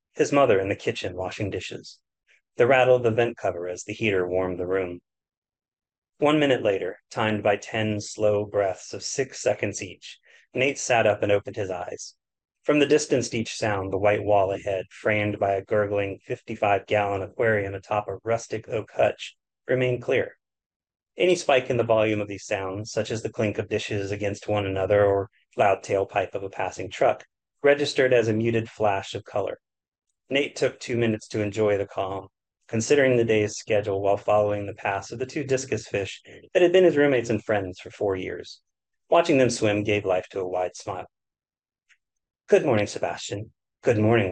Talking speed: 185 wpm